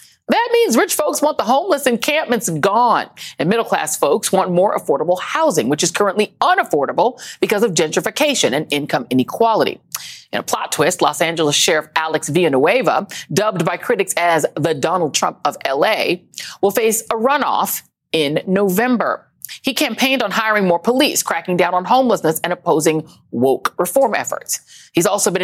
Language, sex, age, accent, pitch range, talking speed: English, female, 40-59, American, 175-245 Hz, 160 wpm